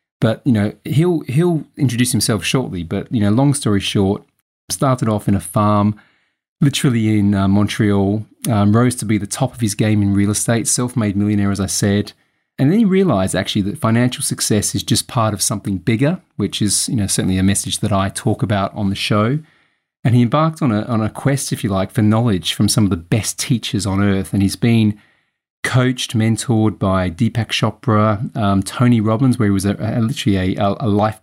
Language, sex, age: English, male, 30-49